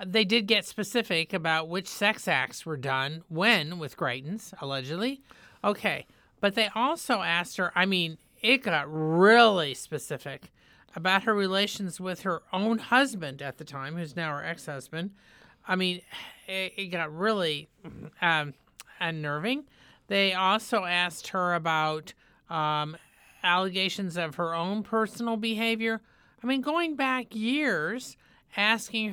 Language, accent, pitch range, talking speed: English, American, 170-220 Hz, 135 wpm